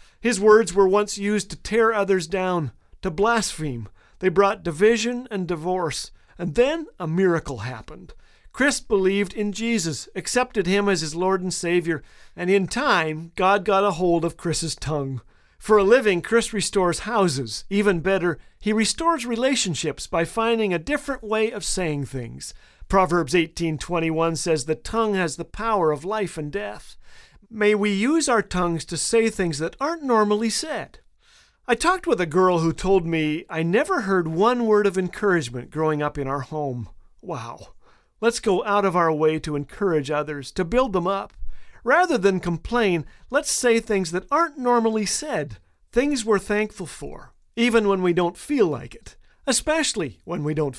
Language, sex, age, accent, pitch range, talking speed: English, male, 50-69, American, 165-215 Hz, 170 wpm